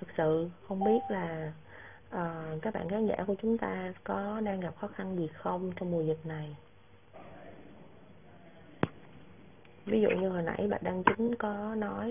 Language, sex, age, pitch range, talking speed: Vietnamese, female, 20-39, 160-200 Hz, 170 wpm